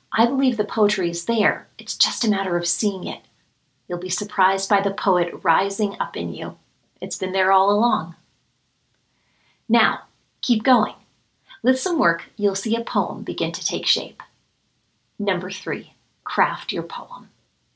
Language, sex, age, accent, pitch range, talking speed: English, female, 40-59, American, 190-240 Hz, 160 wpm